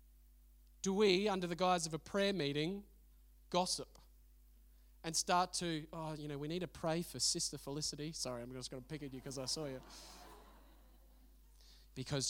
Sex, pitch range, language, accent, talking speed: male, 105-160 Hz, English, Australian, 175 wpm